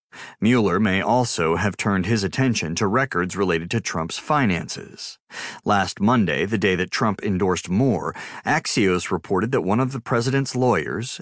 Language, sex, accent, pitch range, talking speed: English, male, American, 100-135 Hz, 155 wpm